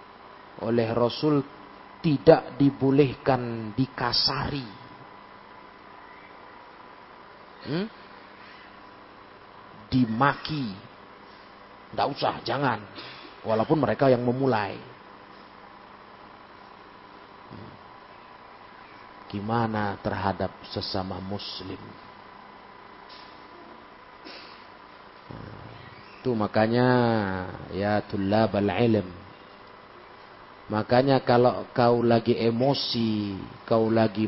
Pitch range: 100-125 Hz